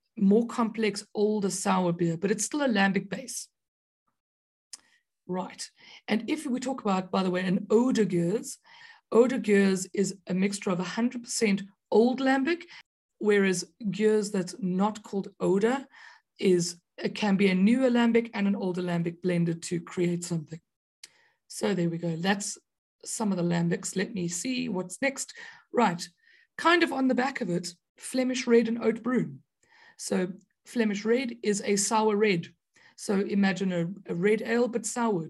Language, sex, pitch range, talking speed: English, female, 185-235 Hz, 165 wpm